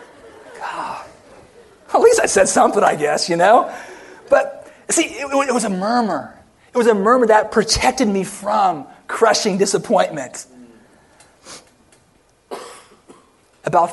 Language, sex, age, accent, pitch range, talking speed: English, male, 40-59, American, 150-245 Hz, 115 wpm